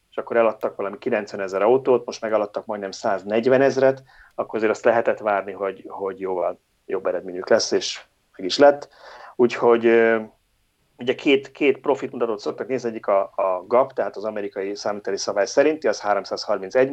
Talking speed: 170 wpm